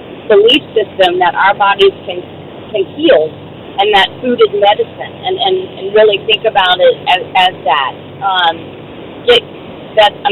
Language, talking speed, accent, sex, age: English, 155 wpm, American, female, 40-59